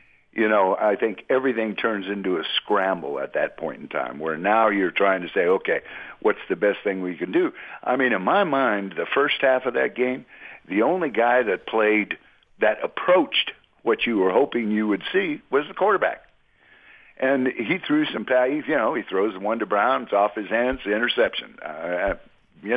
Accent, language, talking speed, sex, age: American, English, 200 wpm, male, 60-79